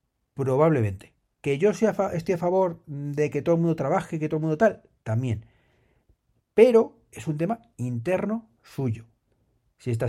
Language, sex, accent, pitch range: Spanish, male, Spanish, 110-150 Hz